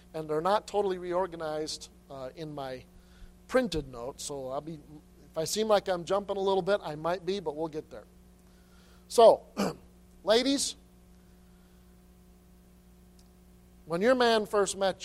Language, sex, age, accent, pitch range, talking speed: English, male, 50-69, American, 135-185 Hz, 145 wpm